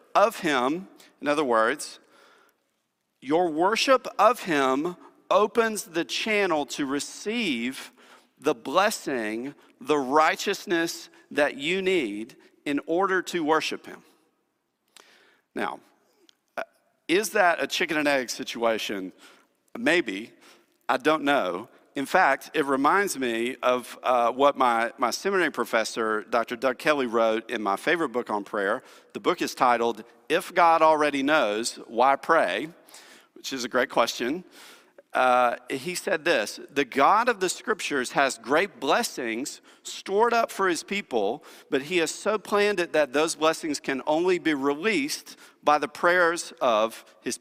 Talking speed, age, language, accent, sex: 140 wpm, 50-69, English, American, male